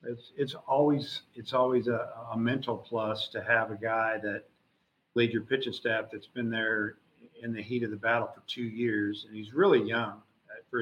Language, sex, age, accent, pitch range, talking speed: English, male, 50-69, American, 110-125 Hz, 195 wpm